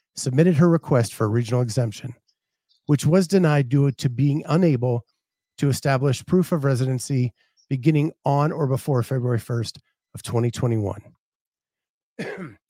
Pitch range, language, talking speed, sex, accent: 120-155 Hz, English, 130 wpm, male, American